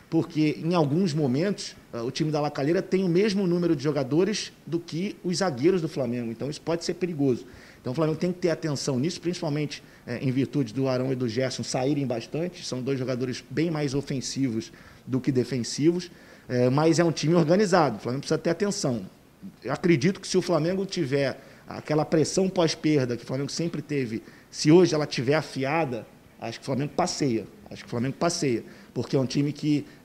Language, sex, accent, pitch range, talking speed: Portuguese, male, Brazilian, 130-170 Hz, 195 wpm